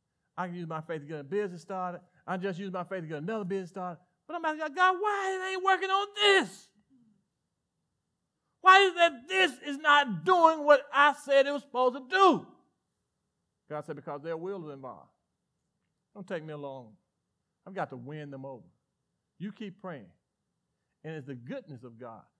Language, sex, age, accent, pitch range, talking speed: English, male, 40-59, American, 165-270 Hz, 195 wpm